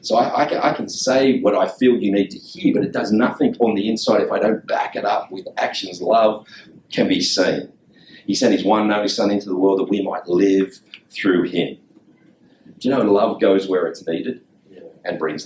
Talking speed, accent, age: 215 wpm, Australian, 40-59